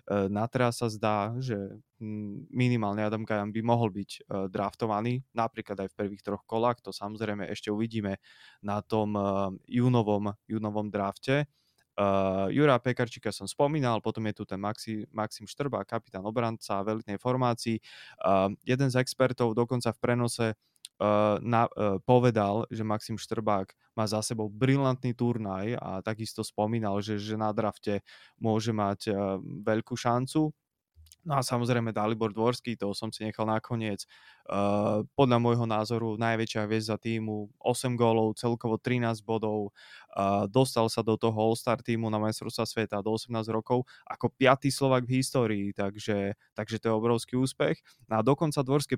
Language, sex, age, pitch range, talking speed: Slovak, male, 20-39, 105-120 Hz, 150 wpm